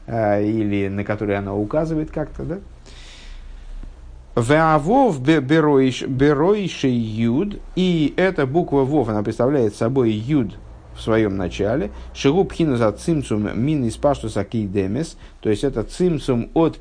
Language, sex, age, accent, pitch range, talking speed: Russian, male, 50-69, native, 105-150 Hz, 110 wpm